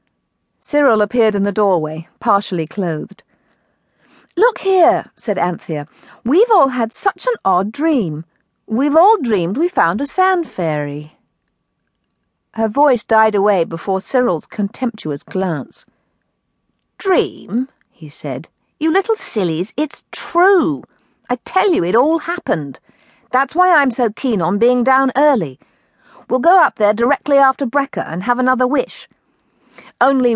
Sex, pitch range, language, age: female, 190-275 Hz, English, 50-69